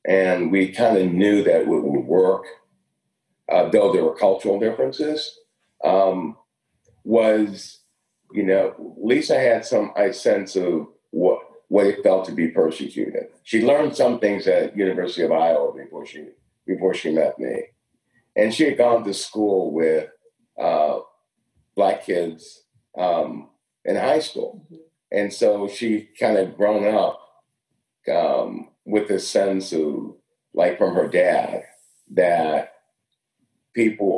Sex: male